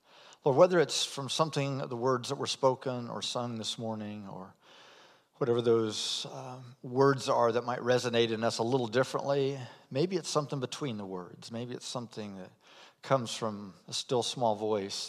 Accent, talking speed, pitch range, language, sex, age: American, 175 wpm, 110-140 Hz, English, male, 50-69